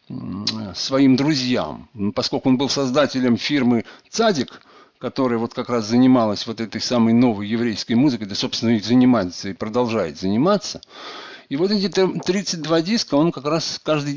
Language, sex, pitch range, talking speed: Russian, male, 120-170 Hz, 150 wpm